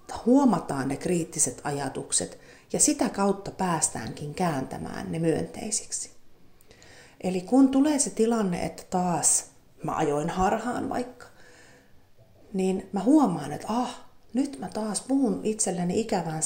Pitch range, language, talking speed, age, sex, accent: 170-245 Hz, Finnish, 120 wpm, 40-59, female, native